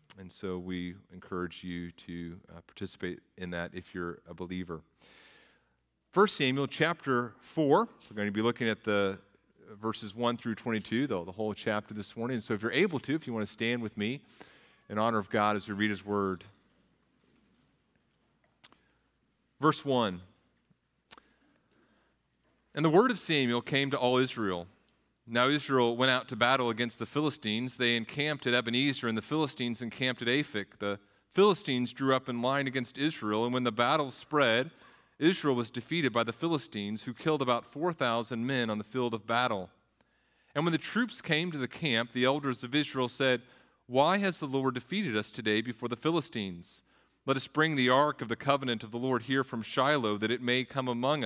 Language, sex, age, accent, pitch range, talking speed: English, male, 40-59, American, 105-135 Hz, 185 wpm